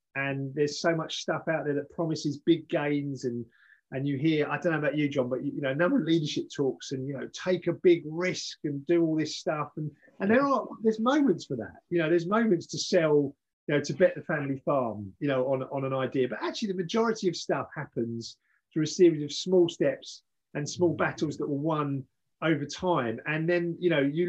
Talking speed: 230 wpm